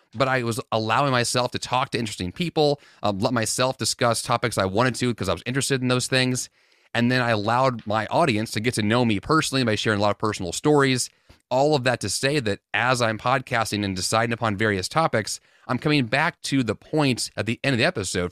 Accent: American